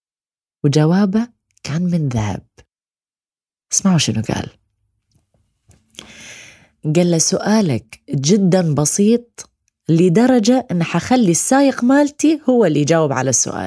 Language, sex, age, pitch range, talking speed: Arabic, female, 20-39, 140-210 Hz, 95 wpm